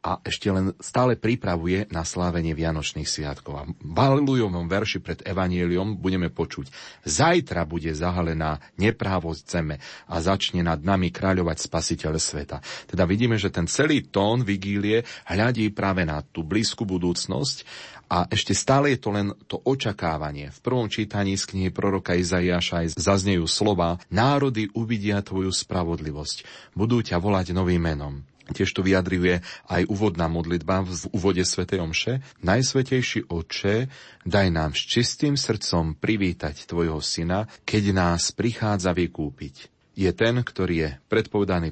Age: 30-49